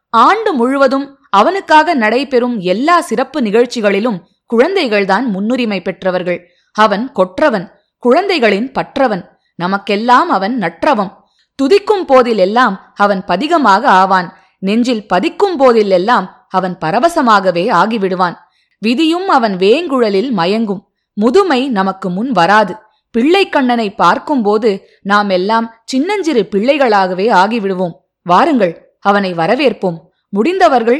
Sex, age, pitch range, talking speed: female, 20-39, 195-275 Hz, 90 wpm